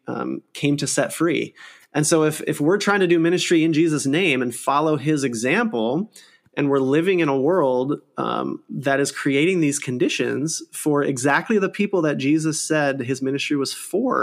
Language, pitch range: English, 135-175 Hz